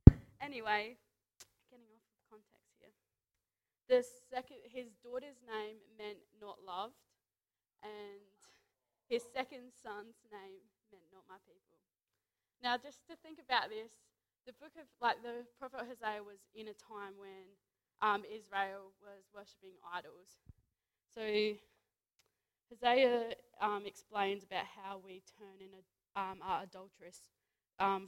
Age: 20-39